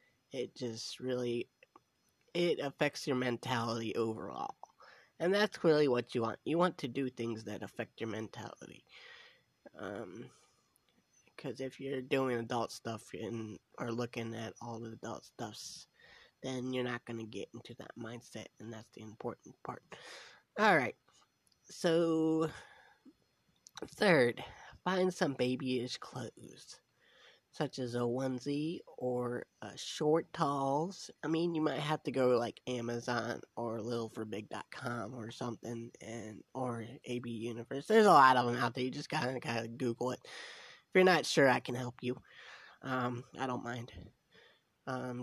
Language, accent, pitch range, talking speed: English, American, 115-140 Hz, 150 wpm